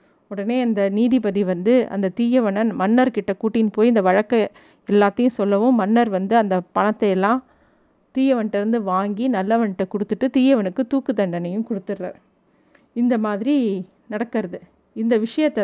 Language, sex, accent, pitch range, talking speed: Tamil, female, native, 205-260 Hz, 125 wpm